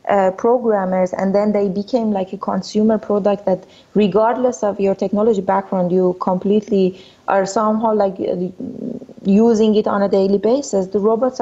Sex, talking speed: female, 150 wpm